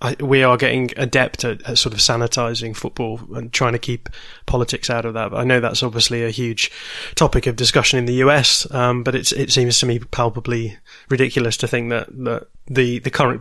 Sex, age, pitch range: male, 20-39, 120-140 Hz